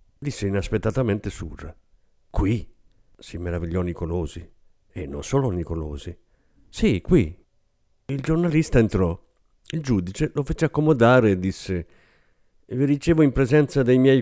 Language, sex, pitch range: Italian, male, 95-145 Hz